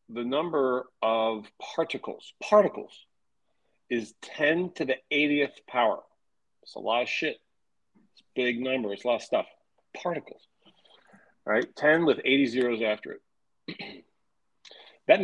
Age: 40-59